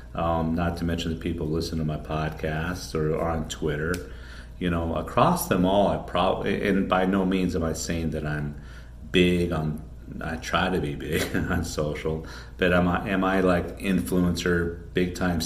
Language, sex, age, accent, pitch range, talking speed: English, male, 40-59, American, 75-85 Hz, 190 wpm